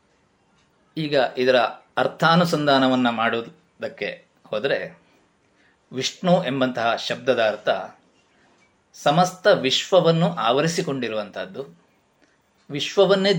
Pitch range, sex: 130-180 Hz, male